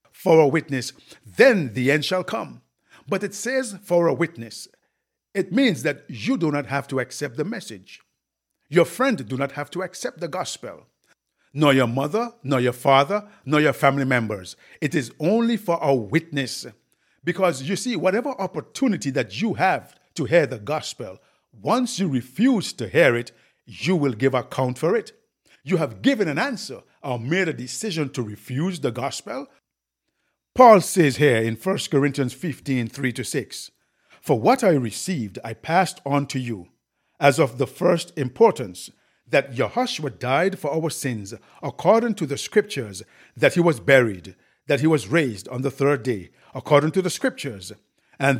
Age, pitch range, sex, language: 50-69, 130-185 Hz, male, English